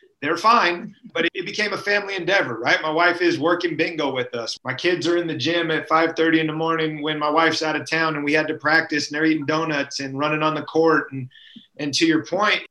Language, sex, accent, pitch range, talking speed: English, male, American, 135-170 Hz, 245 wpm